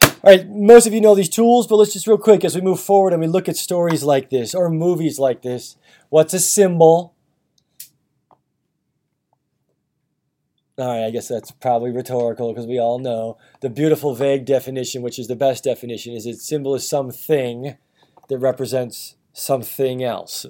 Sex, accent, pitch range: male, American, 140-185 Hz